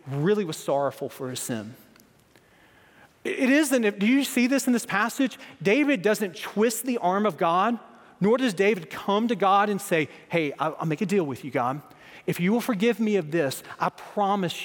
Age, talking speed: 40-59, 195 wpm